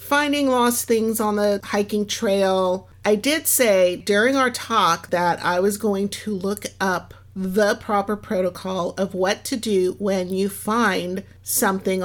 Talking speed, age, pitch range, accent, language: 155 wpm, 50-69, 185-220 Hz, American, English